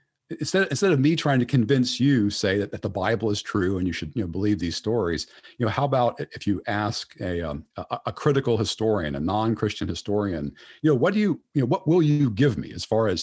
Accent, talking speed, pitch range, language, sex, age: American, 245 wpm, 95-130 Hz, English, male, 50-69